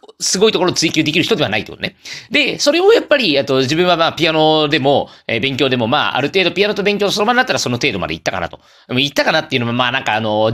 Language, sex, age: Japanese, male, 40-59